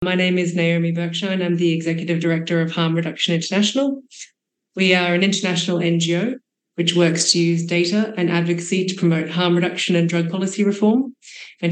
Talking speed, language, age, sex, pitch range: 180 wpm, English, 30-49, female, 170-190 Hz